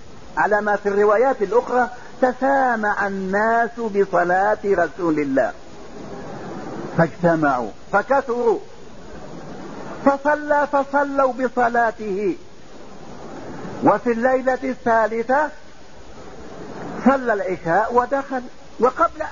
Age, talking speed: 50-69, 70 wpm